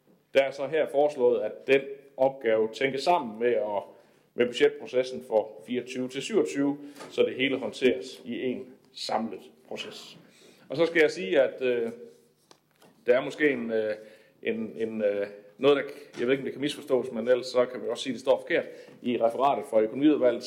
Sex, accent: male, native